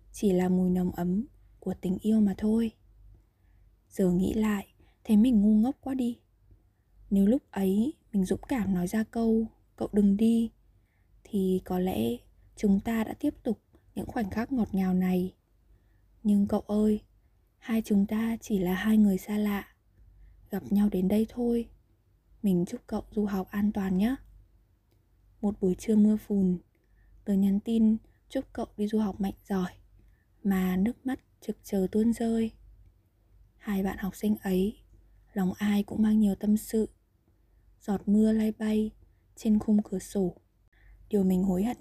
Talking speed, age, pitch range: 165 wpm, 10-29, 180-220 Hz